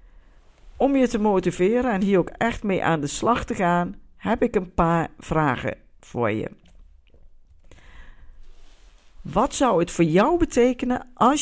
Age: 50-69